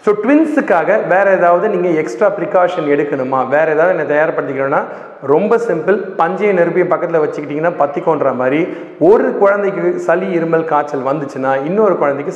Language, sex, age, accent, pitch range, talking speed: Tamil, male, 40-59, native, 145-205 Hz, 135 wpm